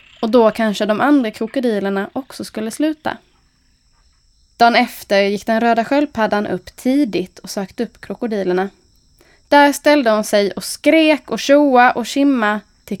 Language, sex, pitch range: Swedish, female, 205-260 Hz